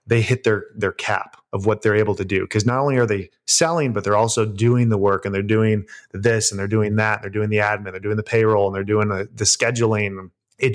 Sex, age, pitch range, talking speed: male, 30-49, 105-120 Hz, 265 wpm